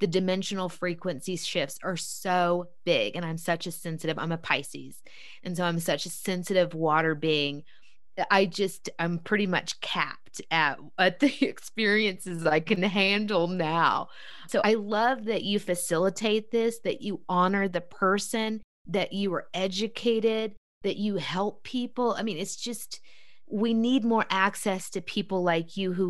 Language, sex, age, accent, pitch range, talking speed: English, female, 20-39, American, 170-210 Hz, 160 wpm